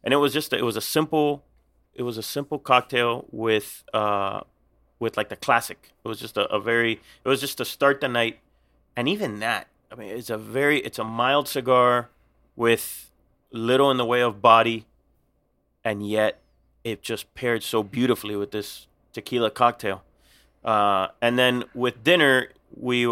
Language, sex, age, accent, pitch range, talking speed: English, male, 30-49, American, 100-125 Hz, 175 wpm